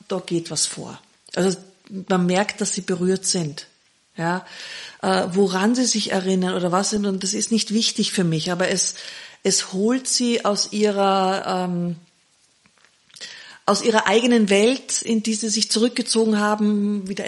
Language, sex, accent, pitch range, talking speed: German, female, German, 185-220 Hz, 140 wpm